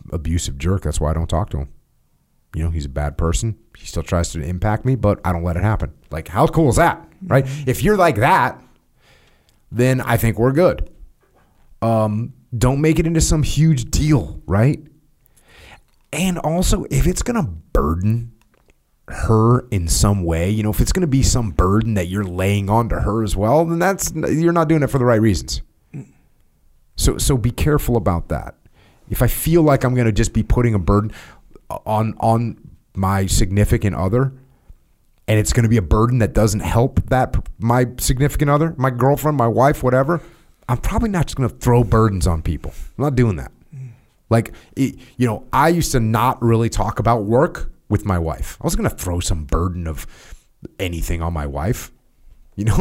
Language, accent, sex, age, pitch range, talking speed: English, American, male, 30-49, 95-135 Hz, 190 wpm